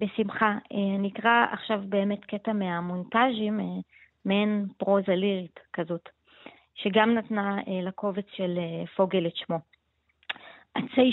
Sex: female